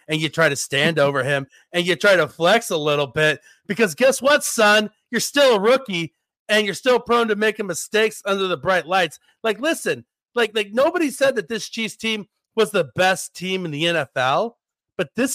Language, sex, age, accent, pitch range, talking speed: English, male, 40-59, American, 150-215 Hz, 205 wpm